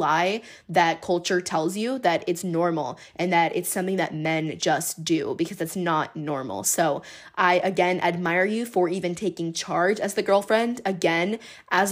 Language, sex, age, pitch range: English, female, 20-39, 165-200 Hz